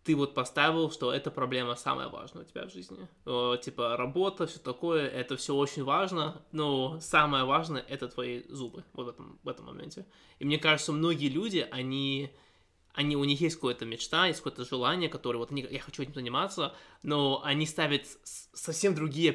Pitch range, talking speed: 125-155 Hz, 190 wpm